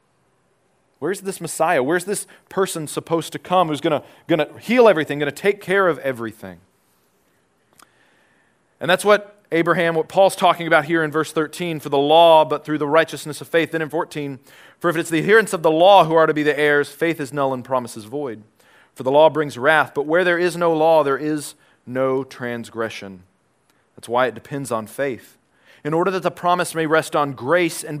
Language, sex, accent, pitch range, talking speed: English, male, American, 120-160 Hz, 205 wpm